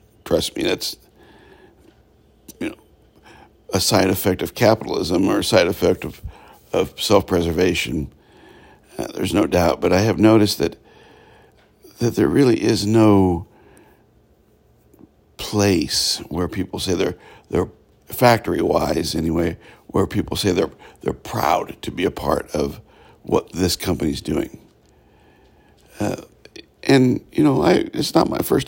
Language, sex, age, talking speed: English, male, 60-79, 130 wpm